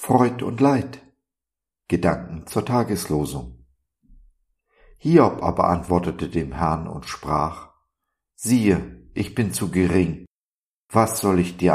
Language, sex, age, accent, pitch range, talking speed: German, male, 50-69, German, 80-100 Hz, 110 wpm